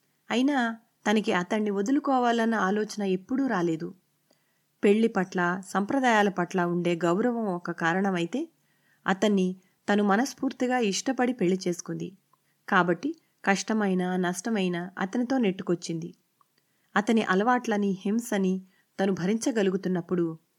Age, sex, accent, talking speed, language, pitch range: 30-49, female, native, 90 wpm, Telugu, 180-220 Hz